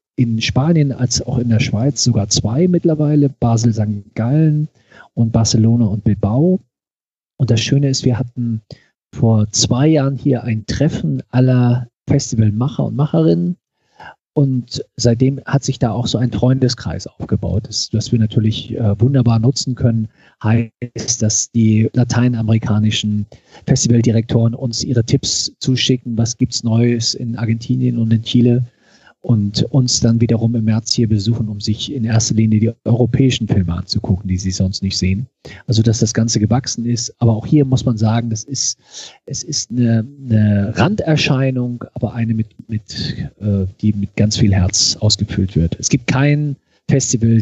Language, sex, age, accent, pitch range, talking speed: German, male, 40-59, German, 110-130 Hz, 155 wpm